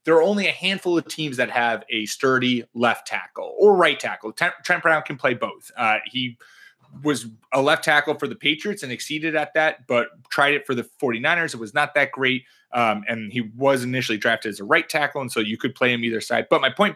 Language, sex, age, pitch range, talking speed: English, male, 30-49, 120-155 Hz, 235 wpm